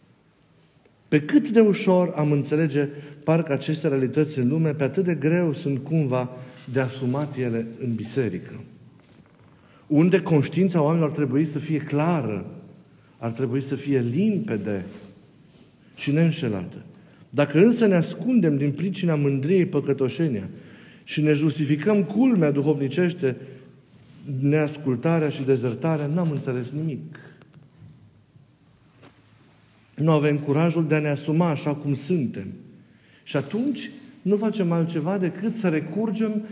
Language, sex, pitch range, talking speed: Romanian, male, 140-180 Hz, 120 wpm